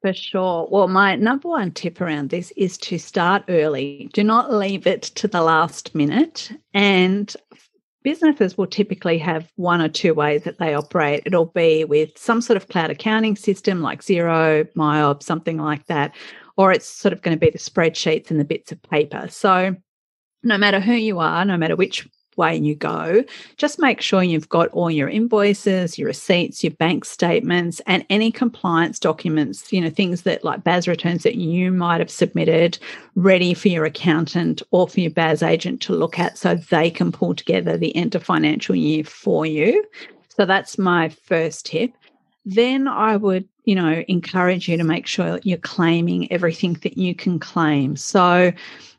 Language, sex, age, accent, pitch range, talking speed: English, female, 40-59, Australian, 160-205 Hz, 185 wpm